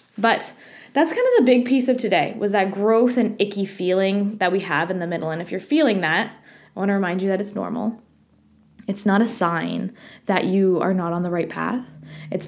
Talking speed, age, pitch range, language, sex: 225 wpm, 20-39, 185-235 Hz, English, female